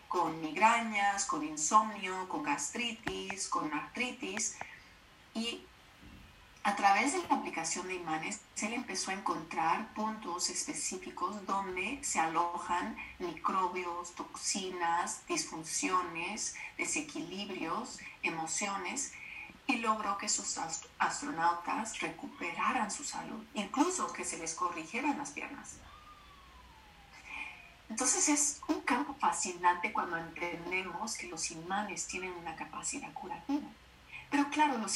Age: 30-49